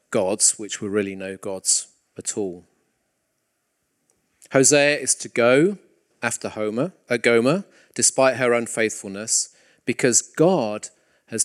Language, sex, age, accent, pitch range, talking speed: English, male, 40-59, British, 110-150 Hz, 110 wpm